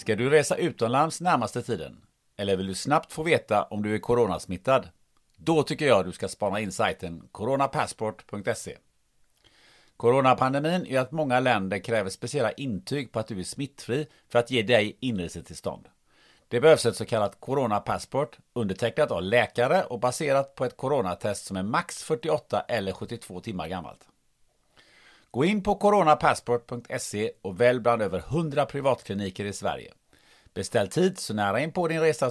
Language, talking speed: Swedish, 160 wpm